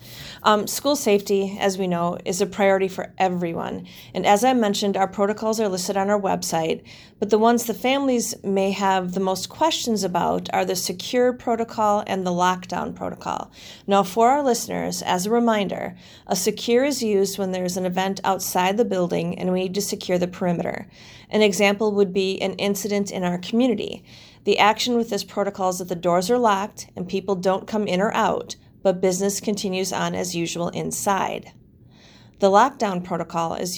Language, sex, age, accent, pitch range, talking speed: English, female, 40-59, American, 180-210 Hz, 185 wpm